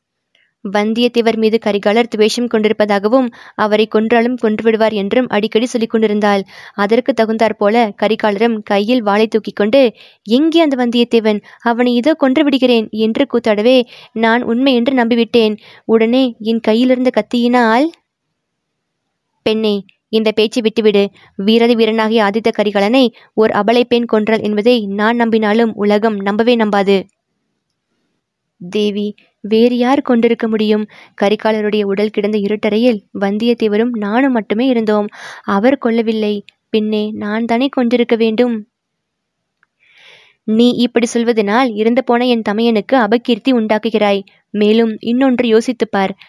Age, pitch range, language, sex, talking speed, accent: 20-39, 210-240 Hz, Tamil, female, 110 wpm, native